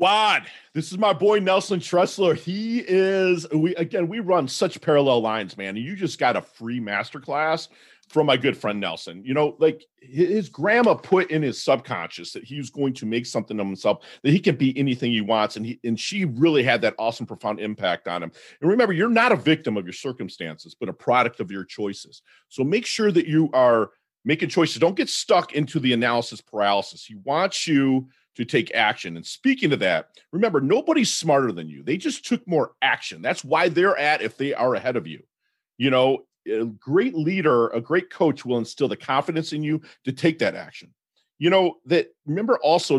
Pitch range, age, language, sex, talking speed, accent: 115-175 Hz, 40-59, English, male, 205 wpm, American